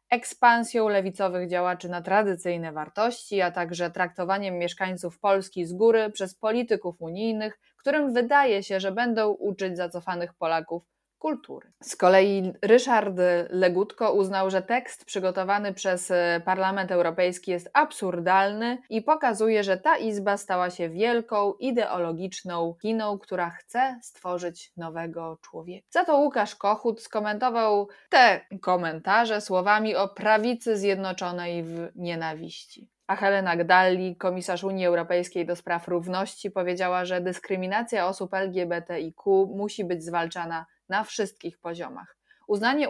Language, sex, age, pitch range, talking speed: Polish, female, 20-39, 180-215 Hz, 120 wpm